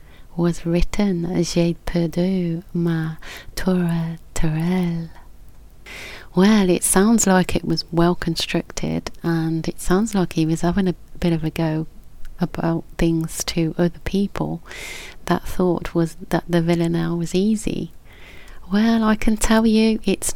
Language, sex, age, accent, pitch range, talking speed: English, female, 30-49, British, 165-185 Hz, 130 wpm